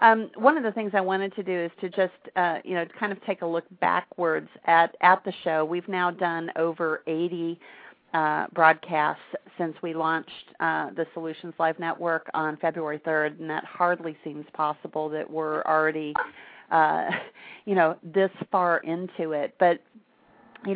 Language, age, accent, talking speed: English, 40-59, American, 175 wpm